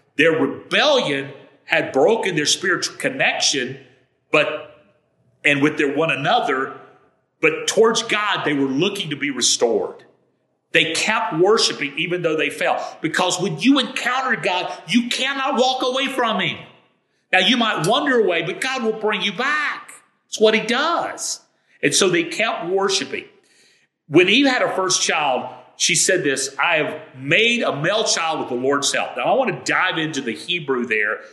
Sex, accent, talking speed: male, American, 170 wpm